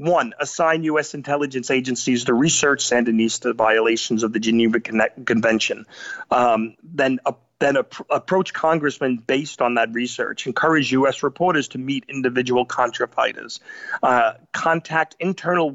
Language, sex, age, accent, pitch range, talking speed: English, male, 40-59, American, 120-145 Hz, 120 wpm